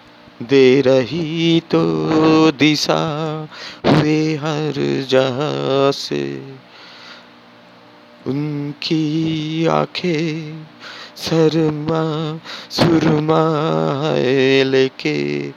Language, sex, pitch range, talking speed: Bengali, male, 115-155 Hz, 50 wpm